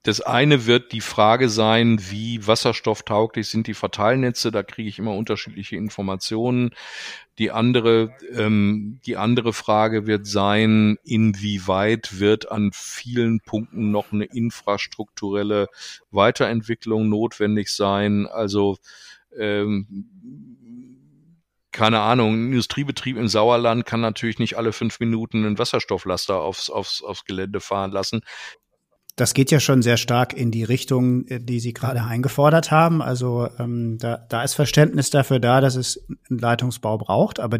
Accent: German